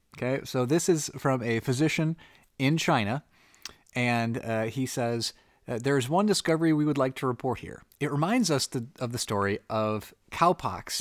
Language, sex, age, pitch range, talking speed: English, male, 30-49, 105-140 Hz, 175 wpm